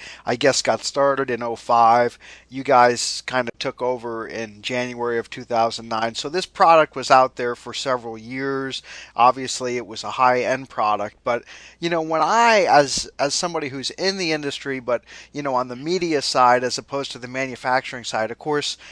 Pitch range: 120-155 Hz